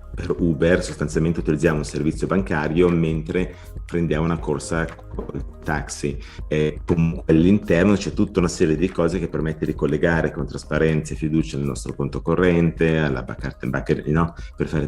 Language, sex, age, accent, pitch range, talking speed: Italian, male, 30-49, native, 75-90 Hz, 170 wpm